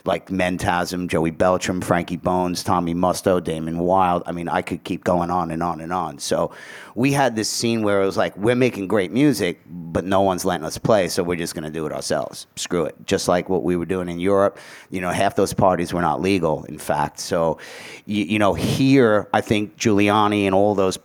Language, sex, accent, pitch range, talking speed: English, male, American, 90-115 Hz, 225 wpm